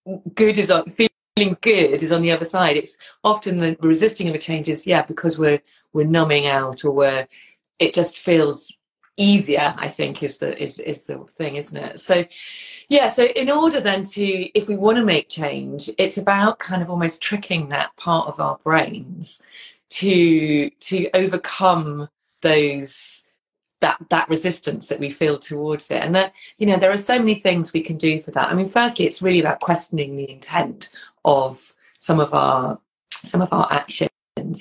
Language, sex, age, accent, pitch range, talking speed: English, female, 30-49, British, 150-190 Hz, 185 wpm